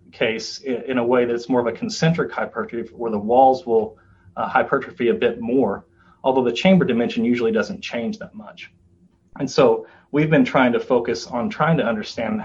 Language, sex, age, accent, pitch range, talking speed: English, male, 30-49, American, 115-150 Hz, 190 wpm